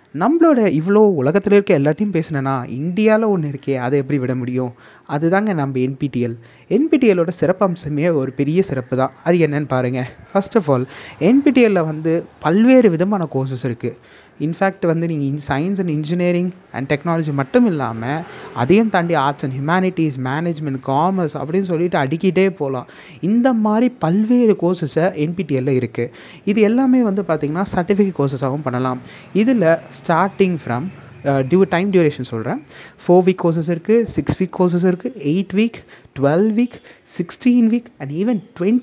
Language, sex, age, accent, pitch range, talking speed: Tamil, male, 30-49, native, 140-195 Hz, 150 wpm